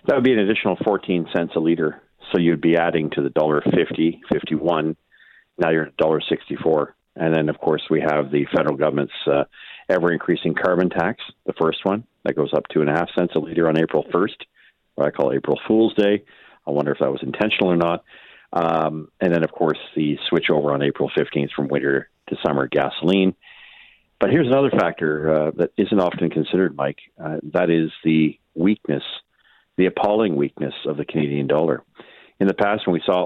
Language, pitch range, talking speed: English, 75-85 Hz, 200 wpm